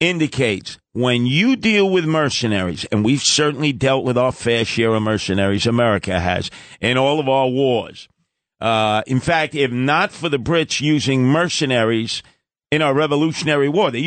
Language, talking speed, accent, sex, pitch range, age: English, 160 wpm, American, male, 125-170 Hz, 50-69